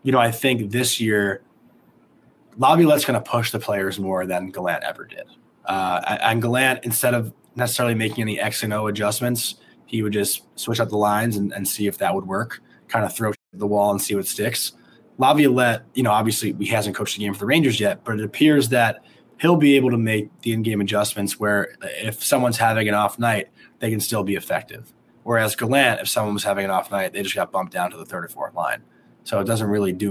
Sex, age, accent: male, 20-39, American